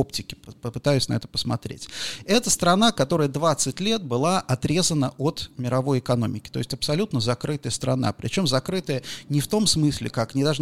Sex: male